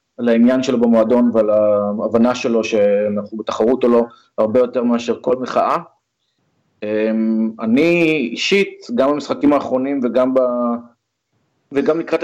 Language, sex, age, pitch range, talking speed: Hebrew, male, 20-39, 110-130 Hz, 125 wpm